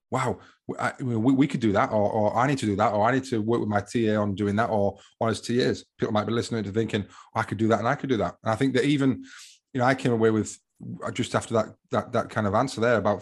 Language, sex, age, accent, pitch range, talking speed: English, male, 30-49, British, 105-120 Hz, 310 wpm